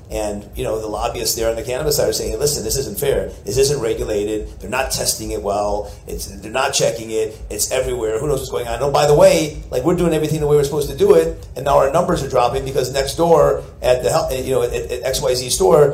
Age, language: 40-59, English